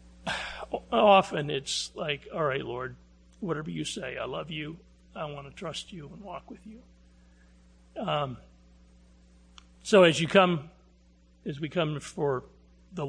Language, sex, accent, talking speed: English, male, American, 140 wpm